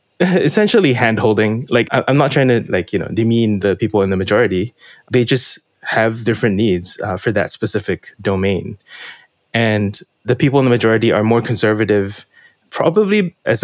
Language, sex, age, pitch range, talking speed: English, male, 20-39, 100-125 Hz, 165 wpm